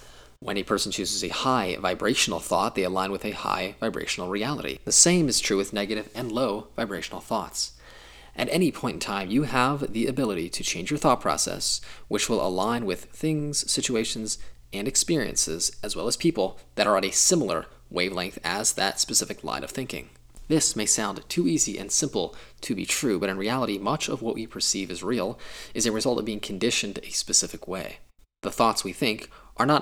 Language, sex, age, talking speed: English, male, 20-39, 195 wpm